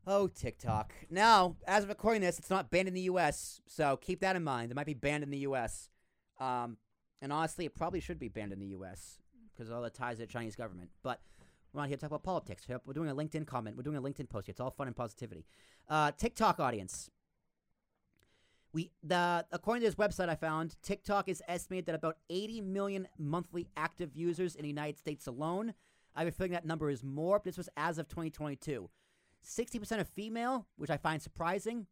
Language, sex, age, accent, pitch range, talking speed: English, male, 30-49, American, 150-195 Hz, 220 wpm